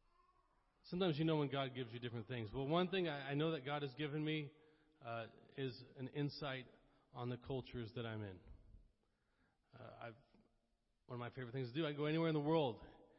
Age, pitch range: 40-59, 115-160 Hz